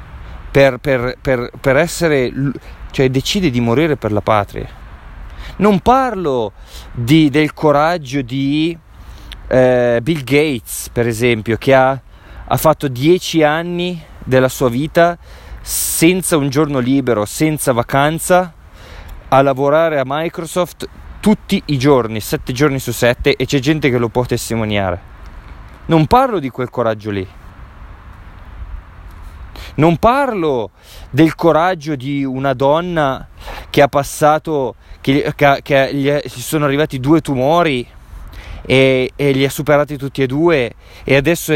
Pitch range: 95-150 Hz